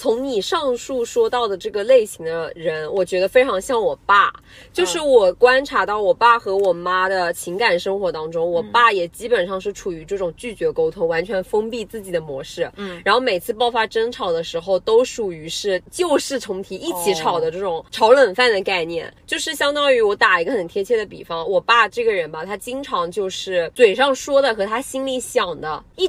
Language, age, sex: Chinese, 20-39, female